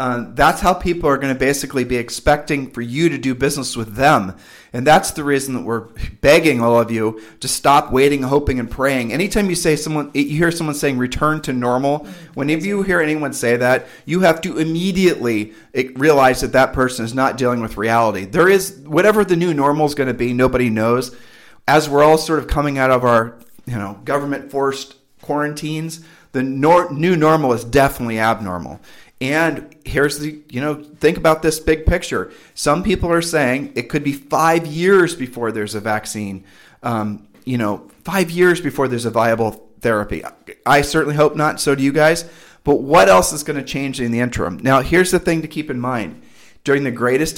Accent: American